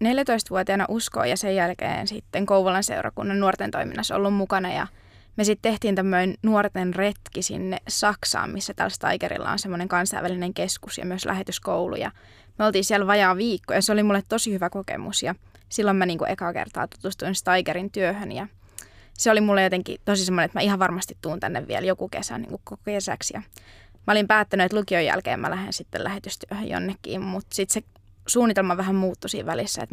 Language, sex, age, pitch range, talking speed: Finnish, female, 20-39, 180-205 Hz, 185 wpm